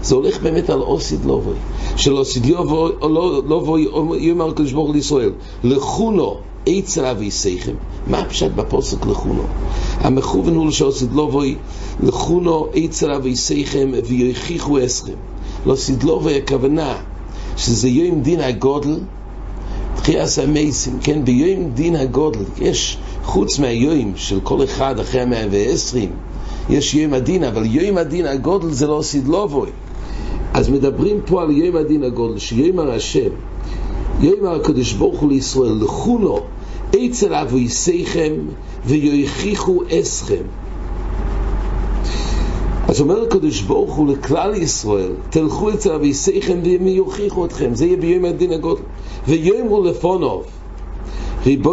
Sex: male